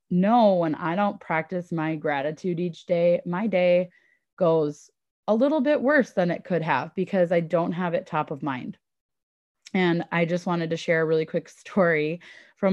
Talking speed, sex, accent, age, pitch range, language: 185 wpm, female, American, 20-39, 160-190 Hz, English